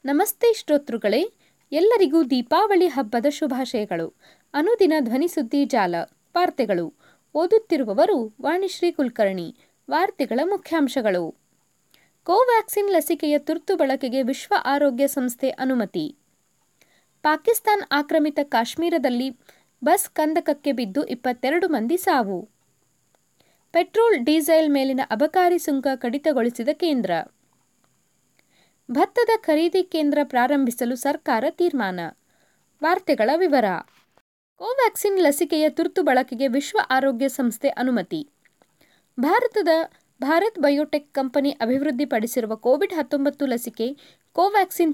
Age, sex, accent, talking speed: 20-39, female, native, 85 wpm